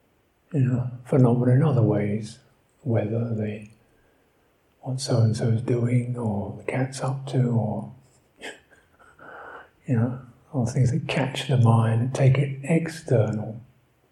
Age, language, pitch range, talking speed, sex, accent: 50-69, English, 120-135 Hz, 125 wpm, male, British